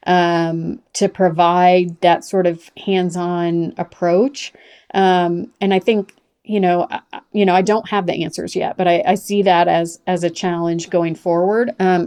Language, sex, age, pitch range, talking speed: English, female, 40-59, 175-200 Hz, 170 wpm